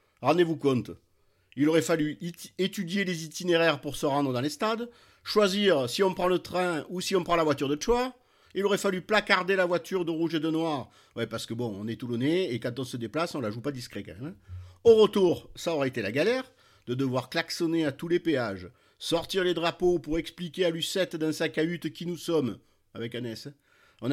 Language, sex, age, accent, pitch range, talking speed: French, male, 50-69, French, 130-175 Hz, 220 wpm